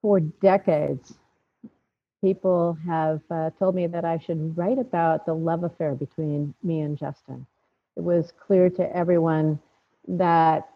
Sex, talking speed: female, 140 wpm